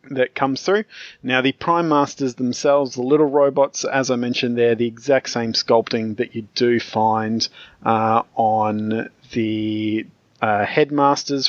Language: English